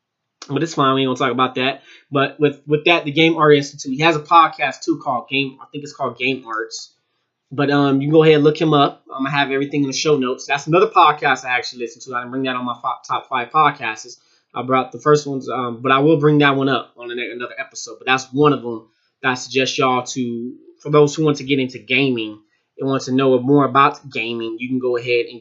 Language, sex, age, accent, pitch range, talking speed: English, male, 20-39, American, 125-150 Hz, 270 wpm